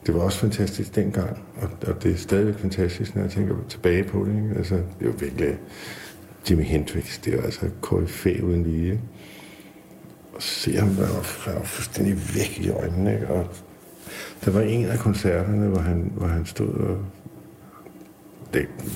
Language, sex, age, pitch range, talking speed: Danish, male, 60-79, 90-105 Hz, 170 wpm